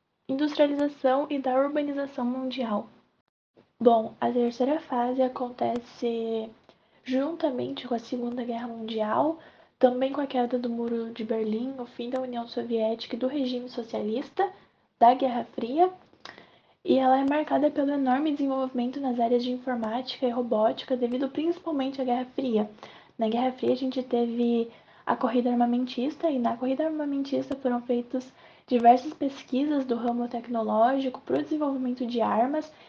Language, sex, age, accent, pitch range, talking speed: Portuguese, female, 10-29, Brazilian, 235-270 Hz, 145 wpm